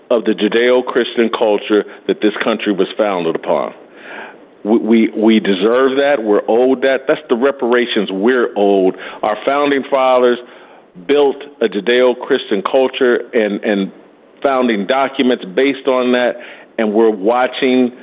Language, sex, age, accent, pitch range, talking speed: English, male, 50-69, American, 110-135 Hz, 135 wpm